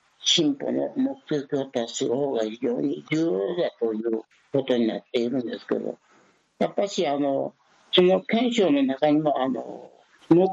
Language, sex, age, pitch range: Japanese, male, 60-79, 120-180 Hz